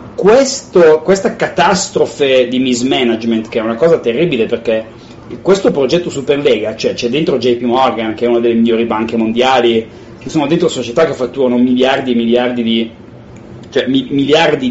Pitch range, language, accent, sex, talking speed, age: 120-170 Hz, Italian, native, male, 160 wpm, 30-49